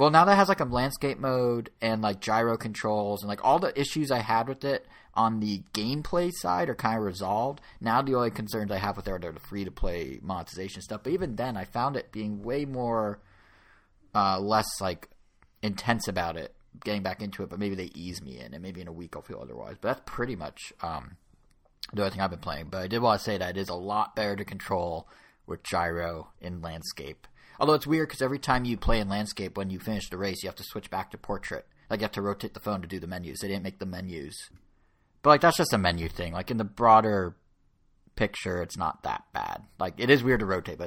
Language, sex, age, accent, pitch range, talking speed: English, male, 30-49, American, 95-115 Hz, 245 wpm